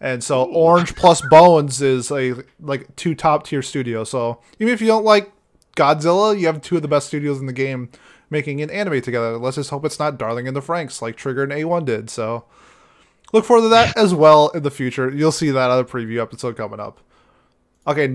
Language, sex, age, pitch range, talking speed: English, male, 20-39, 130-155 Hz, 220 wpm